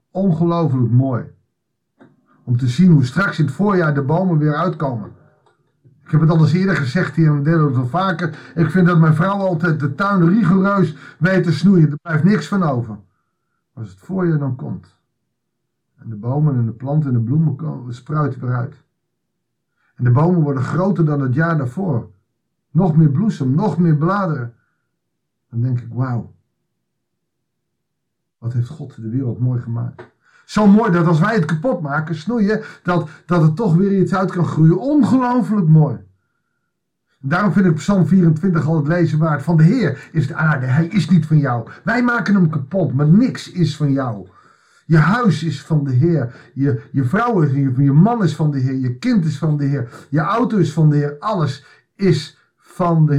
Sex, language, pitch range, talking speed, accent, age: male, Dutch, 135-180 Hz, 195 wpm, Dutch, 50-69